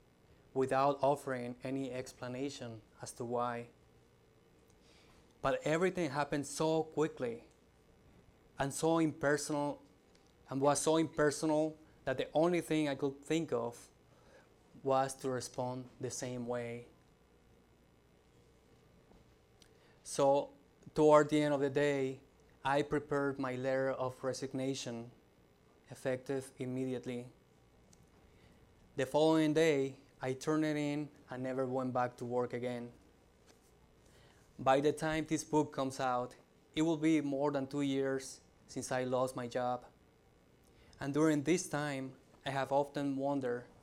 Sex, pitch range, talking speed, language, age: male, 125-150 Hz, 120 wpm, English, 20-39